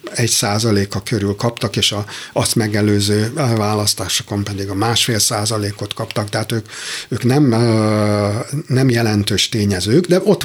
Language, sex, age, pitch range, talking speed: Hungarian, male, 60-79, 105-135 Hz, 125 wpm